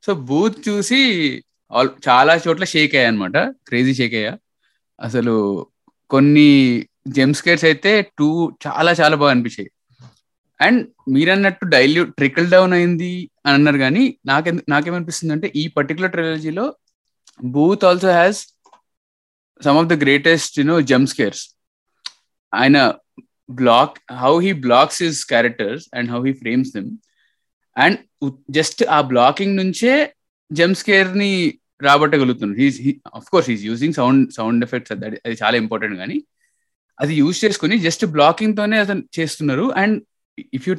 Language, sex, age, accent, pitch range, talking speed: Telugu, male, 20-39, native, 130-180 Hz, 130 wpm